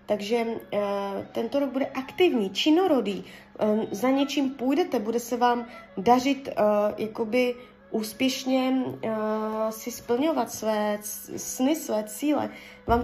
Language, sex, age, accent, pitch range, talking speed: Czech, female, 20-39, native, 200-250 Hz, 120 wpm